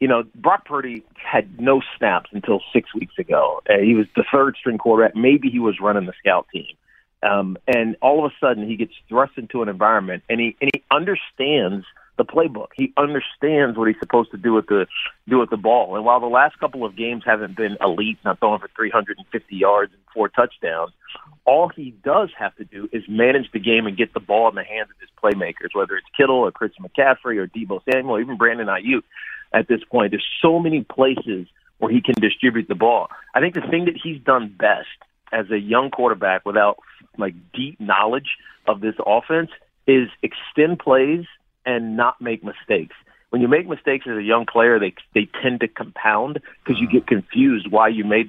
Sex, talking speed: male, 205 wpm